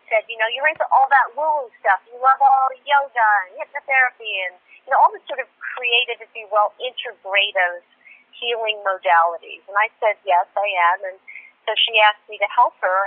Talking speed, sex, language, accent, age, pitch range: 200 wpm, female, English, American, 40-59, 185-225 Hz